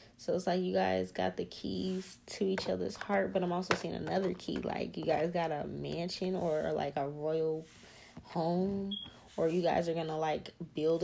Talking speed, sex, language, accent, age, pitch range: 205 wpm, female, English, American, 10-29, 155-195 Hz